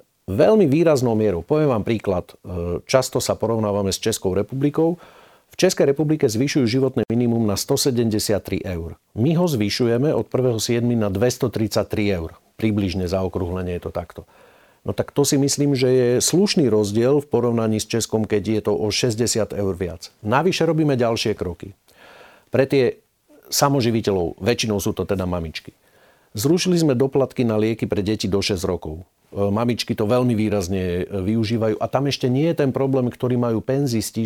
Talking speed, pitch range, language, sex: 160 wpm, 105-130 Hz, Slovak, male